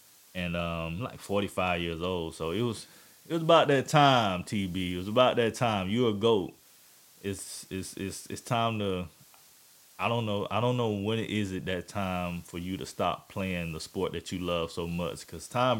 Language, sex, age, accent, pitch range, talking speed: English, male, 20-39, American, 90-115 Hz, 215 wpm